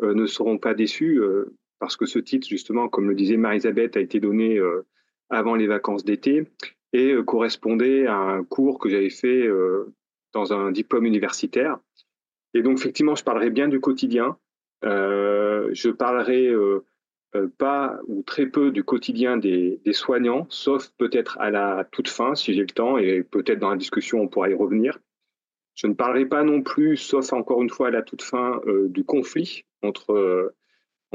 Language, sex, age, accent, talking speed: French, male, 30-49, French, 185 wpm